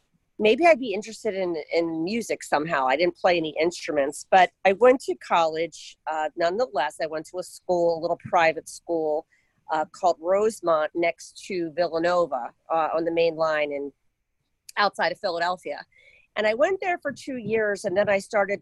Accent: American